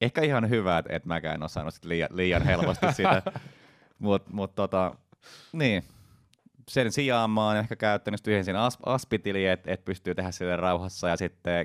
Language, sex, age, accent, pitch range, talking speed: Finnish, male, 20-39, native, 80-100 Hz, 175 wpm